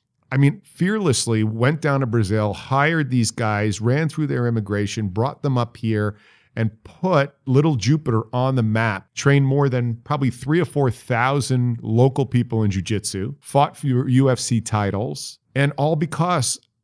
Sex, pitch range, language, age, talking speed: male, 105-135 Hz, English, 50-69, 155 wpm